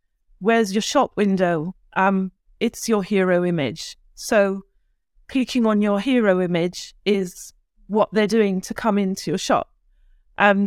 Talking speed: 140 wpm